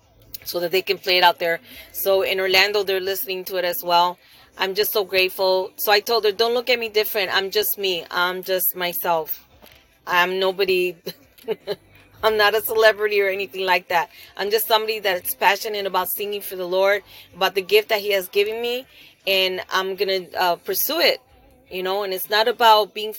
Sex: female